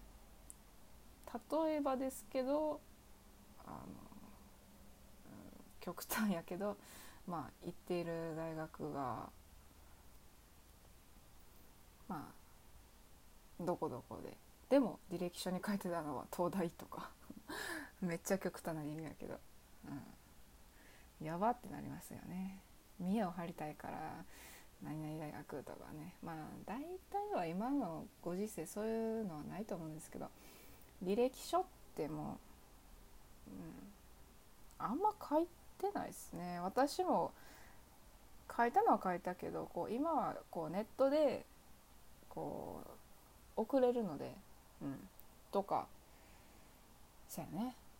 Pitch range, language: 155-235 Hz, Japanese